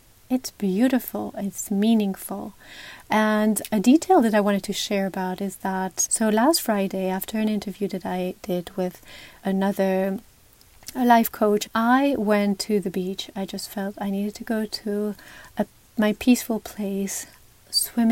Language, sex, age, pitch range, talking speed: English, female, 30-49, 195-225 Hz, 155 wpm